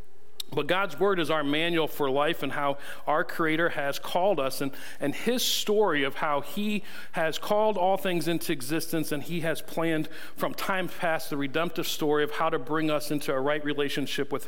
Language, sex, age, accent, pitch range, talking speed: English, male, 40-59, American, 140-175 Hz, 200 wpm